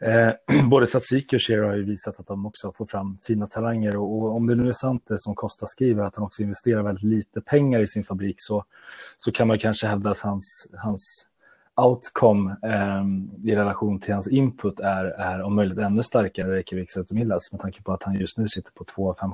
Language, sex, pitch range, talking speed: Swedish, male, 95-110 Hz, 230 wpm